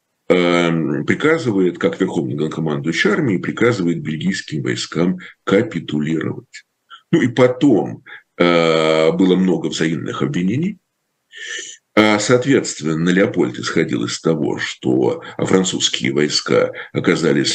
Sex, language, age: male, Russian, 50-69